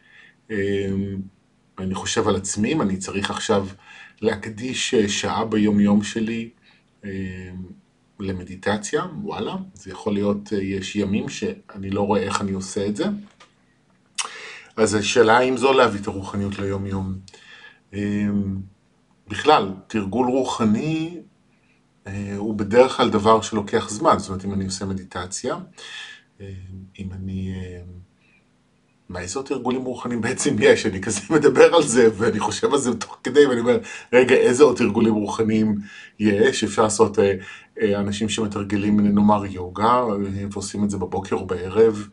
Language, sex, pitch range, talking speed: Hebrew, male, 100-110 Hz, 140 wpm